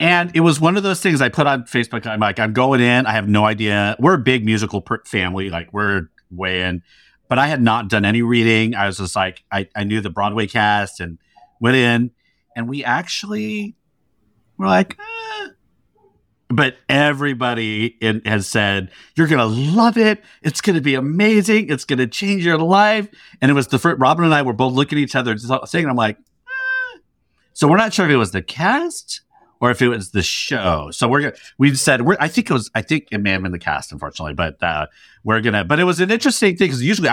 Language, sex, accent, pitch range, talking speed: English, male, American, 105-160 Hz, 220 wpm